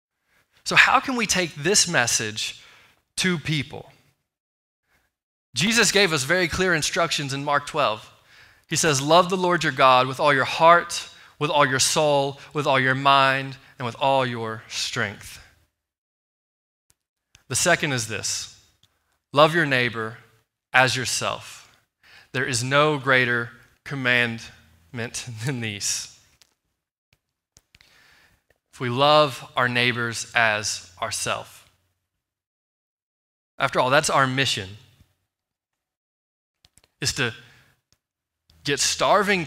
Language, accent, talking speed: English, American, 110 wpm